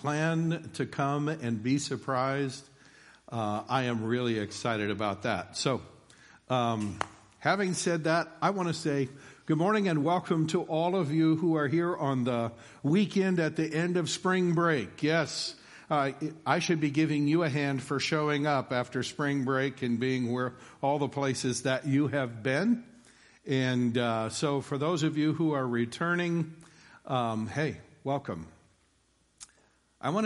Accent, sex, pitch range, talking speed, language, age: American, male, 125-160 Hz, 165 wpm, English, 50-69